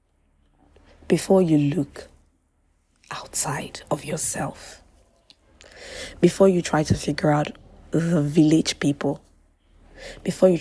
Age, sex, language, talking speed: 20-39, female, English, 95 wpm